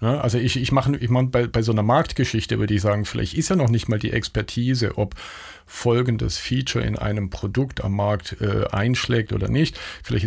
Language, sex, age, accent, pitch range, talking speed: German, male, 50-69, German, 105-130 Hz, 205 wpm